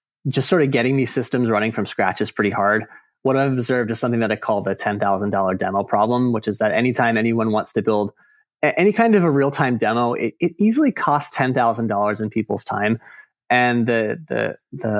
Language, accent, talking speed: English, American, 195 wpm